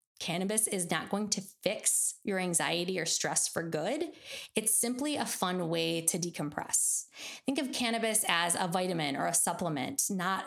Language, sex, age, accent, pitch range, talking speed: English, female, 20-39, American, 175-225 Hz, 165 wpm